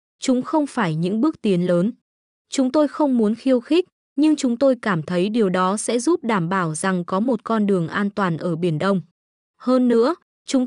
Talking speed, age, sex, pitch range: 210 wpm, 20-39, female, 190-255 Hz